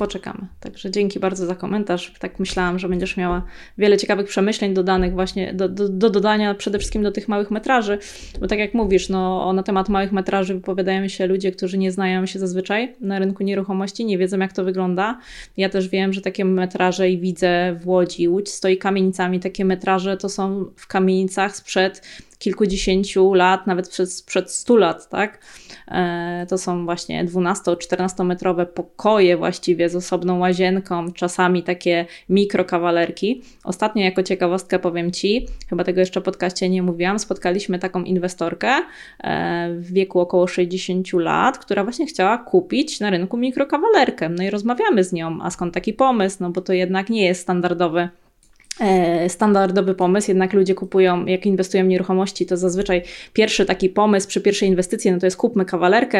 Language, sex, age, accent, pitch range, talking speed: Polish, female, 20-39, native, 180-200 Hz, 170 wpm